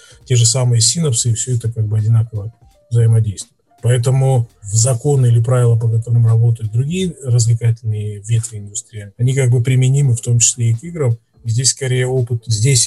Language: English